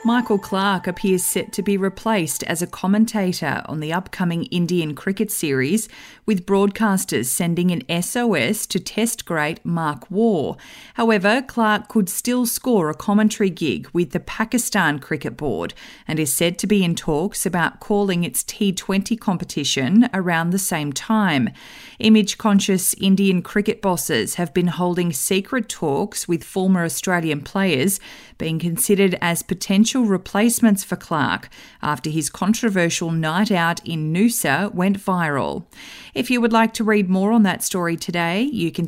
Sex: female